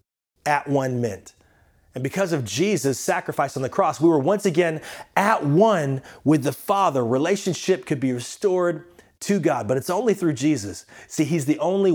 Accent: American